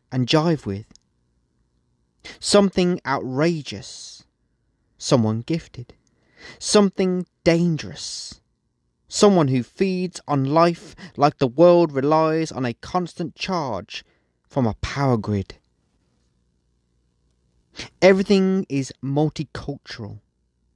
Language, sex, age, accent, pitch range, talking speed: English, male, 30-49, British, 100-155 Hz, 85 wpm